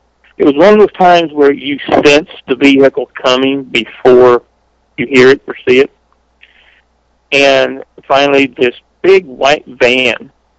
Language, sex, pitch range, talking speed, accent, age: English, male, 110-145 Hz, 140 wpm, American, 50-69